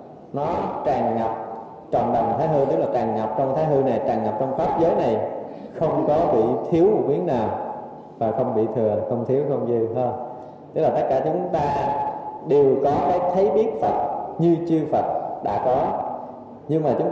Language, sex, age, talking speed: Vietnamese, male, 20-39, 195 wpm